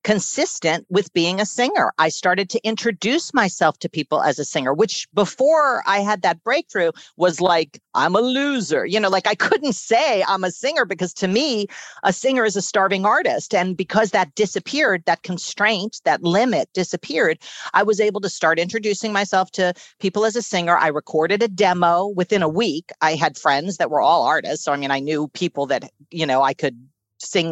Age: 40-59